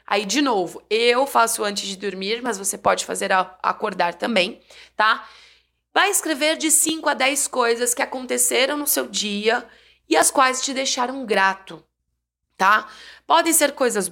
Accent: Brazilian